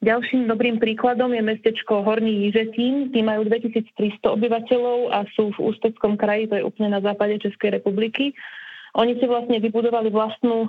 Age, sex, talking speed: 30-49, female, 155 wpm